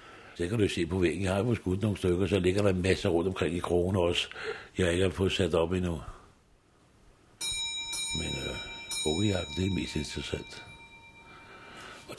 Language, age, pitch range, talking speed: Danish, 60-79, 90-110 Hz, 185 wpm